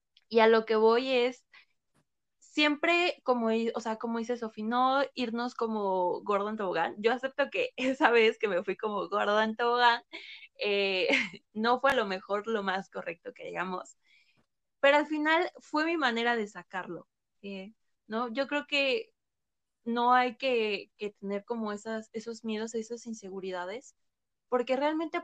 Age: 20-39